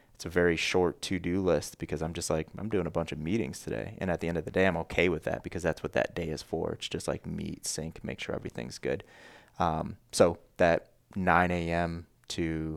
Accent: American